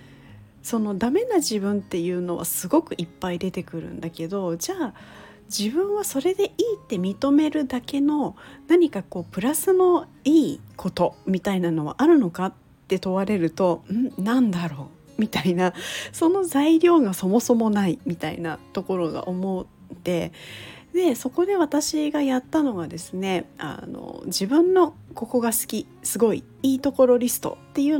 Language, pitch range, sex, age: Japanese, 175-290 Hz, female, 40-59